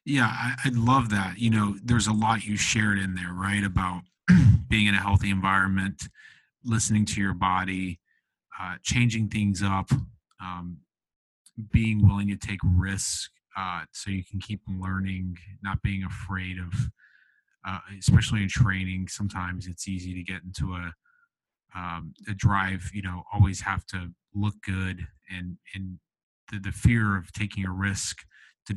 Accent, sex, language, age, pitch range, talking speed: American, male, English, 30-49, 95-110 Hz, 155 wpm